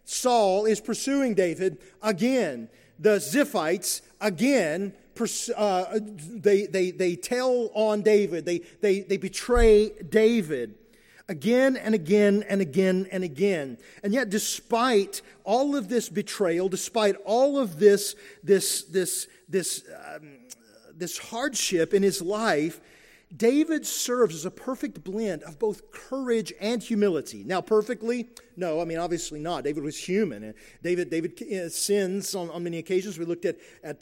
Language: English